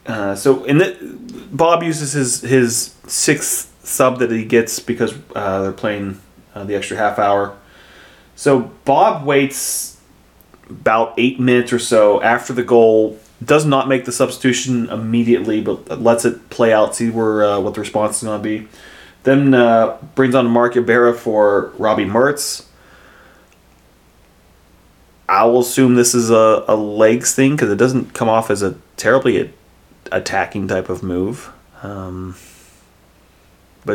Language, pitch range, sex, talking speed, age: English, 100-125 Hz, male, 150 wpm, 30-49